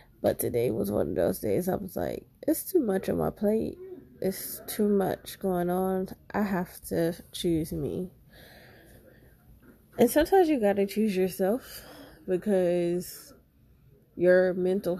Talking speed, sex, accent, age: 145 wpm, female, American, 20-39